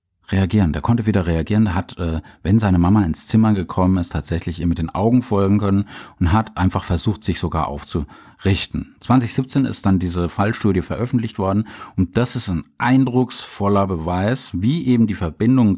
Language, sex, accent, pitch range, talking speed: German, male, German, 90-120 Hz, 170 wpm